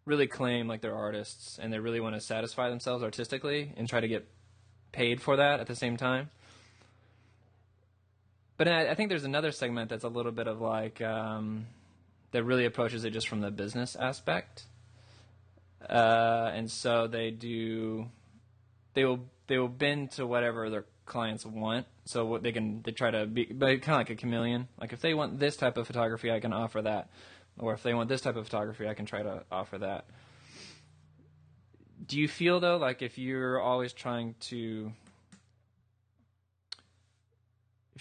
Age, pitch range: 20-39, 110-125 Hz